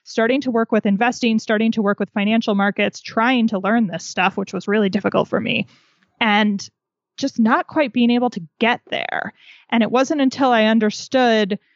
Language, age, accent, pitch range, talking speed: English, 20-39, American, 195-245 Hz, 190 wpm